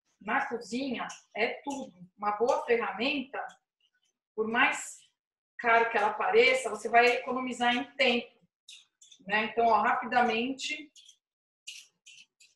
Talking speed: 105 wpm